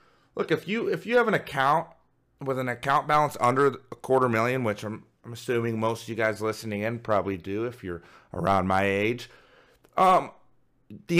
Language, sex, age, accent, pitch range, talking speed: English, male, 30-49, American, 115-165 Hz, 190 wpm